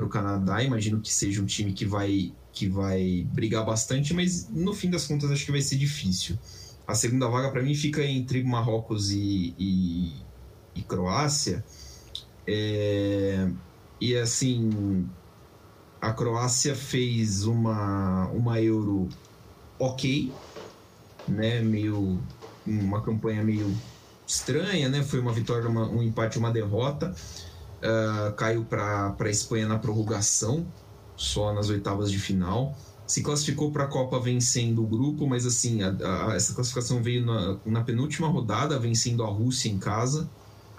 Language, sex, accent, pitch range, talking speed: Portuguese, male, Brazilian, 100-120 Hz, 145 wpm